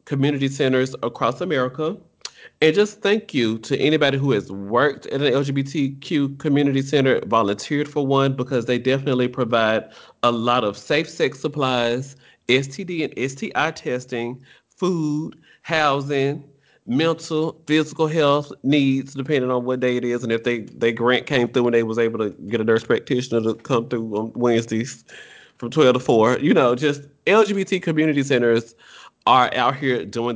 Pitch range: 115-145 Hz